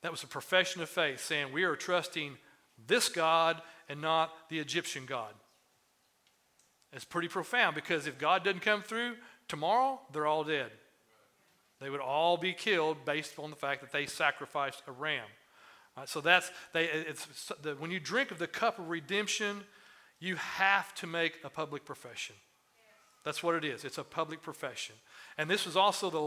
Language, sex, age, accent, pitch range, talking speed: English, male, 40-59, American, 145-180 Hz, 180 wpm